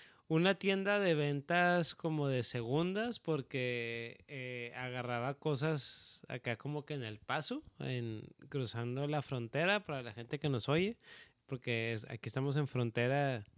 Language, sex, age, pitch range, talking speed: Dutch, male, 20-39, 125-160 Hz, 135 wpm